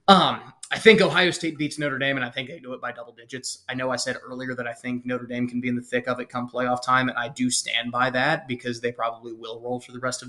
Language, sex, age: English, male, 20-39